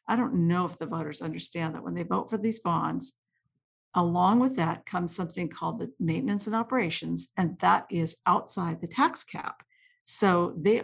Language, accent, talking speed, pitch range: English, American, 185 wpm, 175-230 Hz